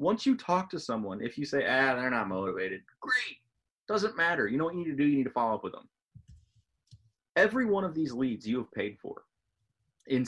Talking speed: 230 wpm